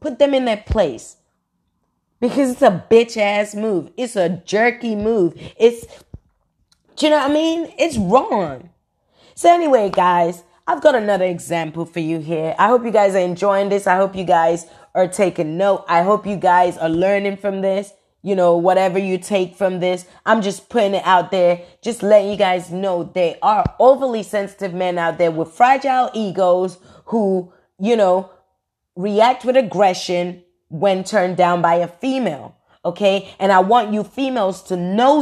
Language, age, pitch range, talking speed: English, 30-49, 180-230 Hz, 175 wpm